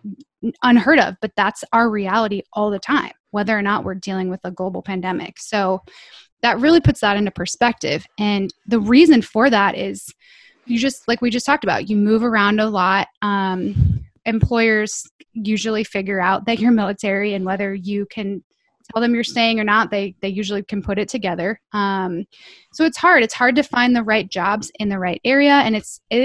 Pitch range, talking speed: 200-240 Hz, 195 wpm